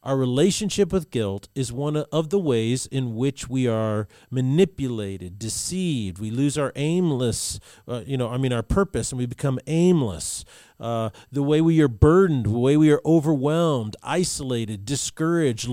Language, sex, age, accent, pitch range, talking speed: English, male, 40-59, American, 125-175 Hz, 165 wpm